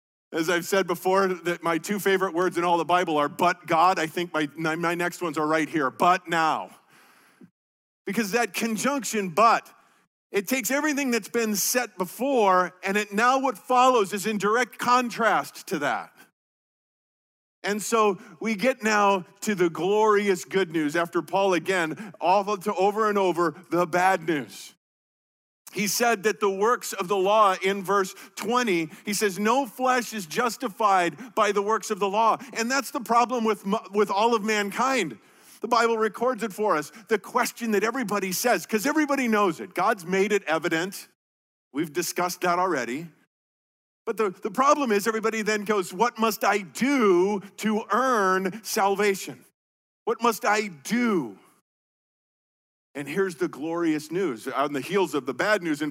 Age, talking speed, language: 50-69, 170 wpm, English